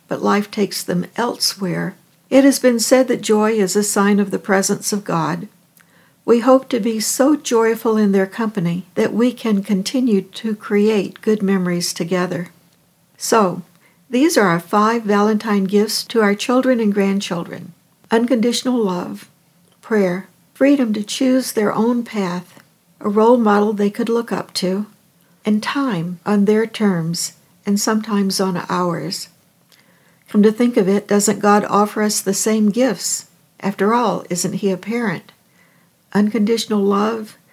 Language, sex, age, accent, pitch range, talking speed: English, female, 60-79, American, 185-225 Hz, 150 wpm